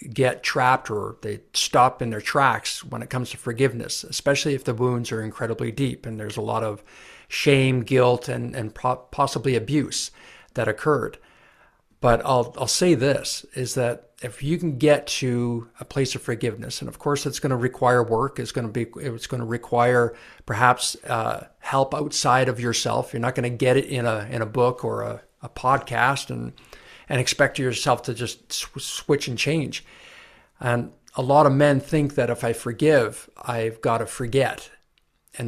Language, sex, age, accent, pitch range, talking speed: English, male, 50-69, American, 120-140 Hz, 190 wpm